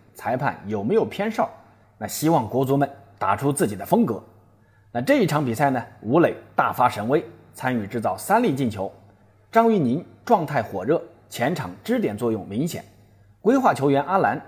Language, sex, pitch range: Chinese, male, 105-145 Hz